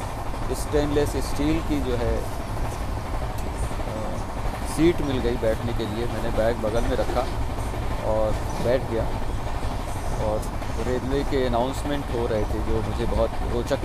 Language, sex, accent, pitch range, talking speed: Hindi, male, native, 105-130 Hz, 130 wpm